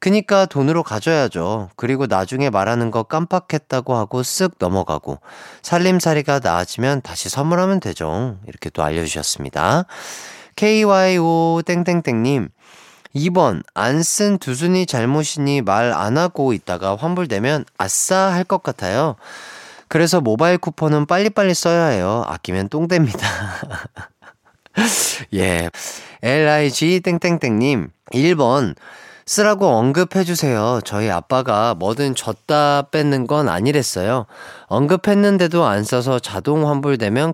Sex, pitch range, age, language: male, 110-170 Hz, 30-49, Korean